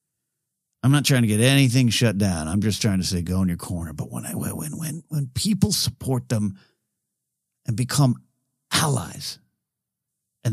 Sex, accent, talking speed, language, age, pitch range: male, American, 170 wpm, English, 50-69, 105-150 Hz